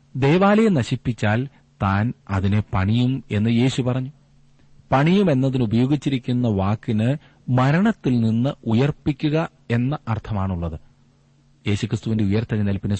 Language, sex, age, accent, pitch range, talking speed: Malayalam, male, 40-59, native, 95-130 Hz, 80 wpm